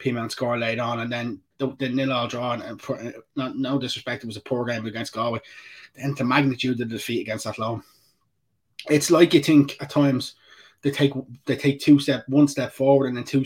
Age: 20-39